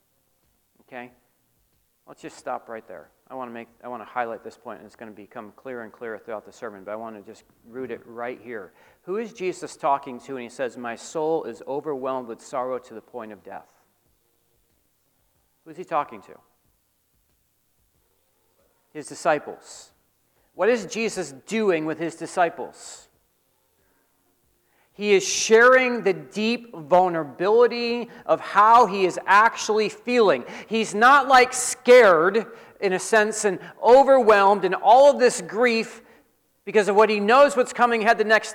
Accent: American